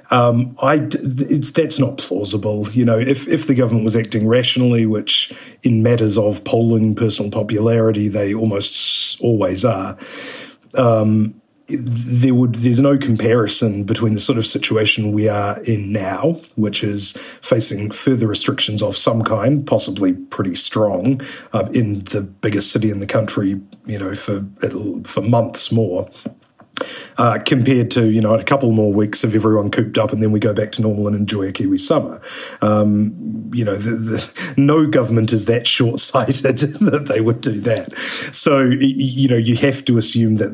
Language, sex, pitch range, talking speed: English, male, 105-130 Hz, 165 wpm